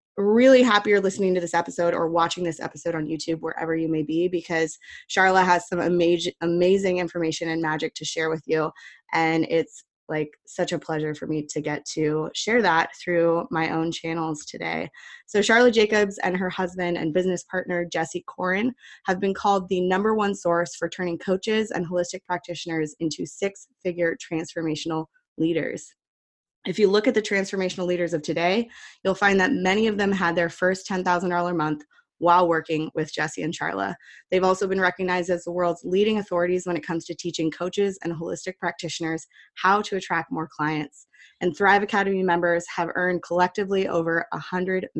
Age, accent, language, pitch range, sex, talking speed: 20-39, American, English, 165-190 Hz, female, 180 wpm